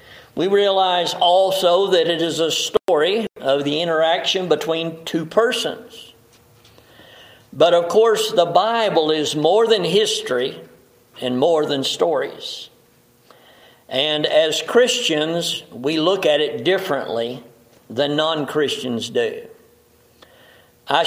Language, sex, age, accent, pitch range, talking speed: English, male, 50-69, American, 140-195 Hz, 110 wpm